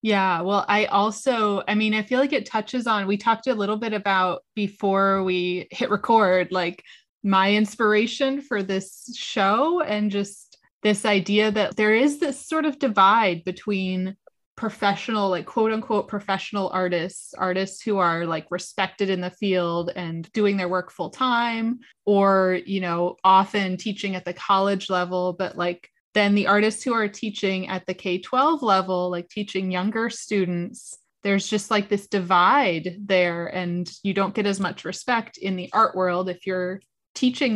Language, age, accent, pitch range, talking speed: English, 20-39, American, 185-220 Hz, 170 wpm